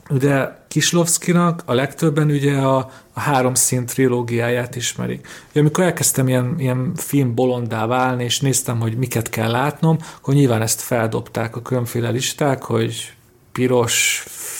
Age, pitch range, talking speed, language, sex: 40-59, 125-155 Hz, 140 wpm, Hungarian, male